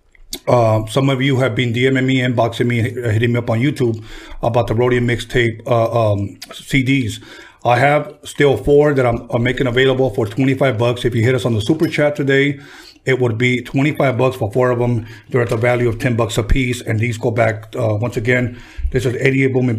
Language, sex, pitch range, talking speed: English, male, 115-135 Hz, 220 wpm